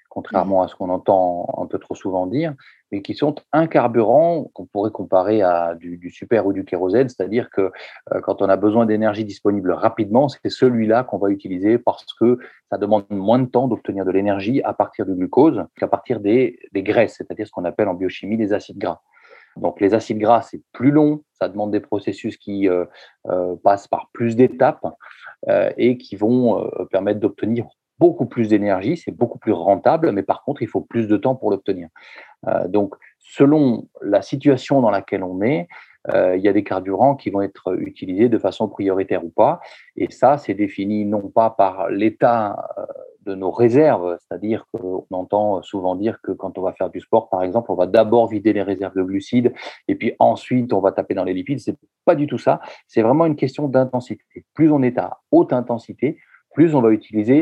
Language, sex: French, male